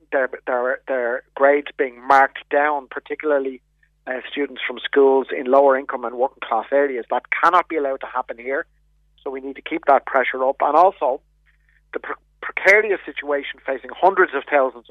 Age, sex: 30-49, male